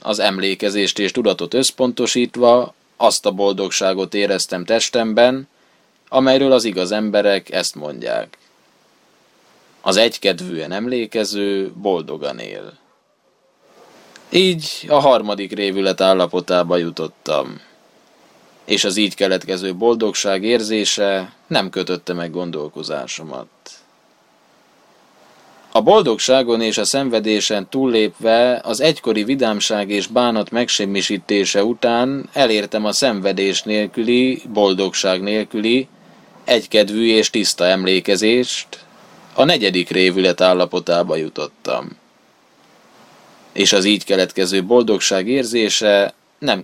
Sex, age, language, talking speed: male, 20-39, Hungarian, 95 wpm